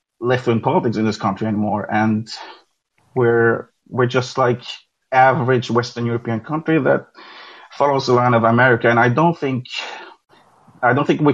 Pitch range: 110-125 Hz